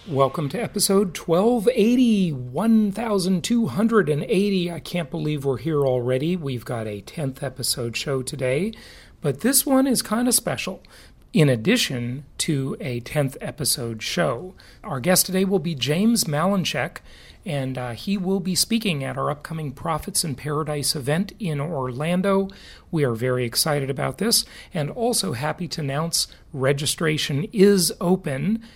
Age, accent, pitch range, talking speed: 40-59, American, 140-195 Hz, 140 wpm